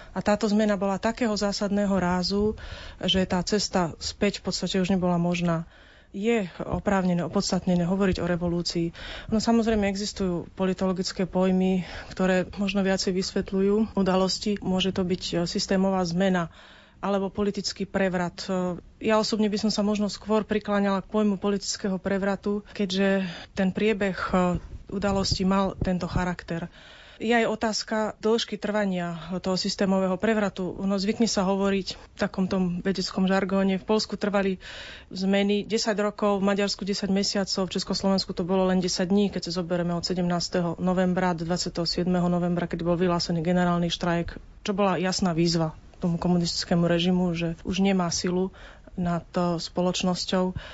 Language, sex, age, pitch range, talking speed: Slovak, female, 30-49, 180-205 Hz, 140 wpm